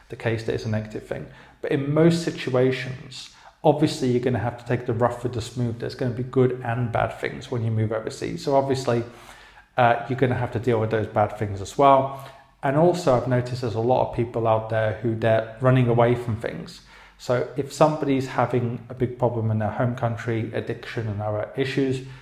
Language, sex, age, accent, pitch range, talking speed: English, male, 30-49, British, 115-130 Hz, 220 wpm